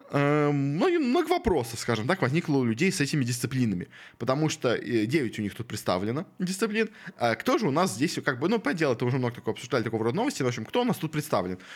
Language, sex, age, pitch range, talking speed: Russian, male, 20-39, 115-150 Hz, 220 wpm